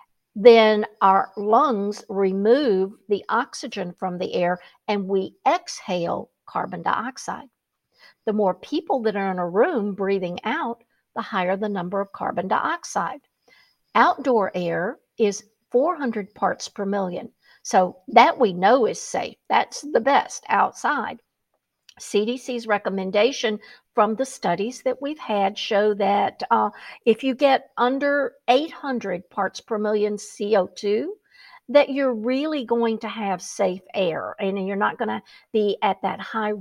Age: 60-79